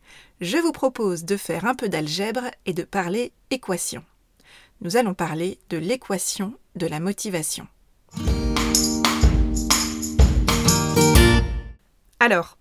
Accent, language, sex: French, French, female